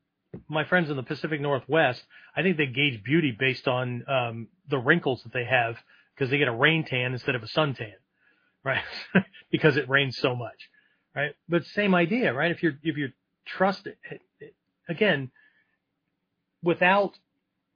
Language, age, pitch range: English, 40-59, 125-170 Hz